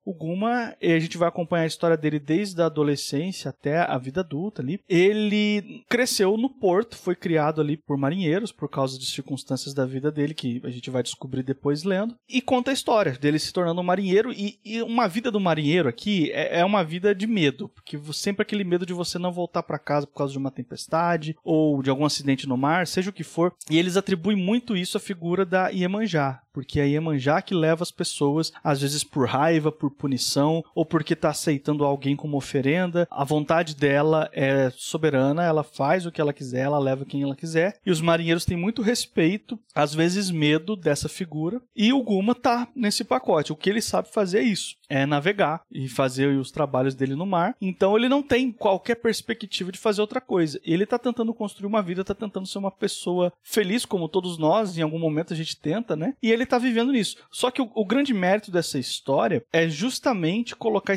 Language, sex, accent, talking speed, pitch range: Portuguese, male, Brazilian, 210 wpm, 150-205 Hz